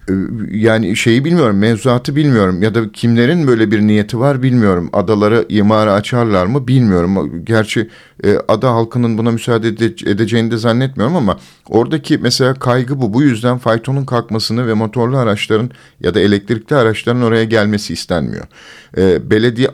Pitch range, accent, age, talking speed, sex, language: 100-125 Hz, native, 50-69, 140 wpm, male, Turkish